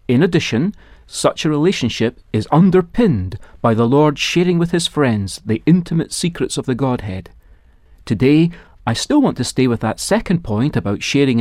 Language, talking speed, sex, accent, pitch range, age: English, 170 wpm, male, British, 105-155 Hz, 40-59